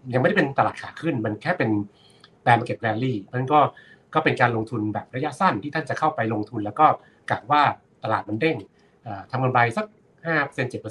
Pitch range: 110-150 Hz